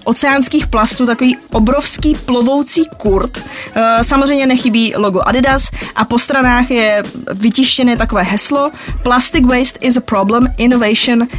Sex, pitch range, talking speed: female, 200-255 Hz, 120 wpm